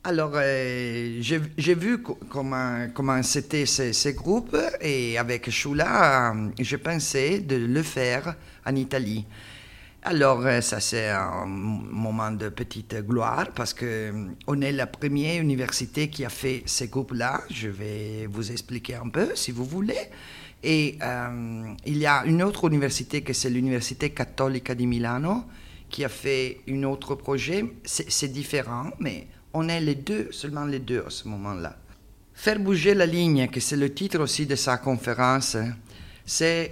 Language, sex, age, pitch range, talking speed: French, male, 50-69, 120-155 Hz, 165 wpm